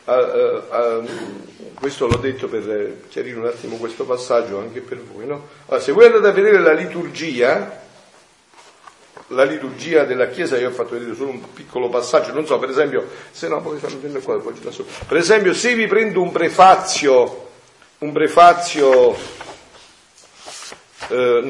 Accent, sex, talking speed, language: native, male, 155 wpm, Italian